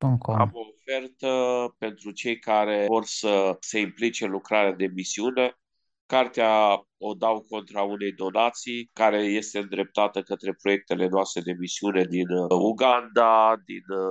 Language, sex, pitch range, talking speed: Romanian, male, 100-120 Hz, 130 wpm